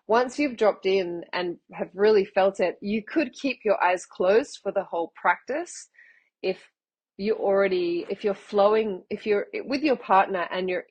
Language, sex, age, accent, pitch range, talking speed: English, female, 30-49, Australian, 170-200 Hz, 175 wpm